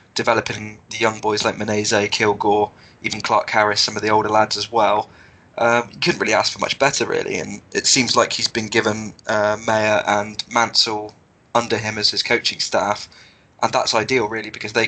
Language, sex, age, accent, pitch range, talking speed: English, male, 20-39, British, 105-115 Hz, 200 wpm